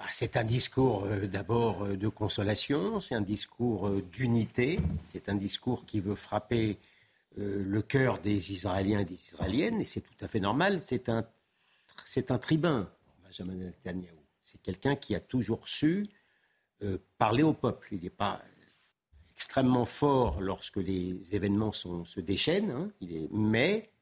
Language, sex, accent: French, male, French